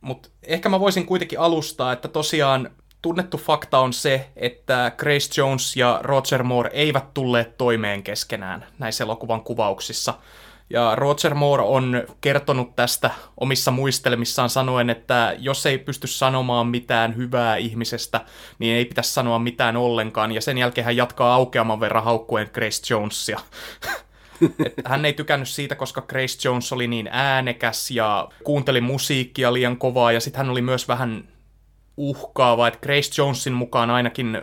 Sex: male